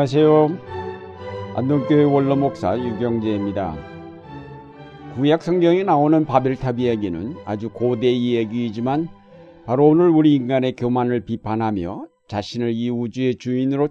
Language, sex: Korean, male